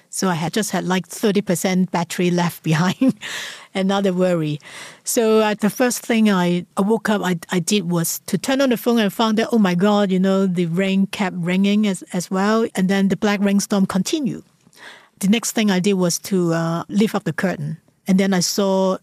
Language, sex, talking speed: English, female, 210 wpm